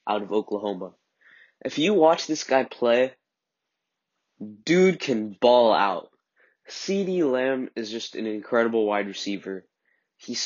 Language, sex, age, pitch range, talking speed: English, male, 10-29, 105-135 Hz, 125 wpm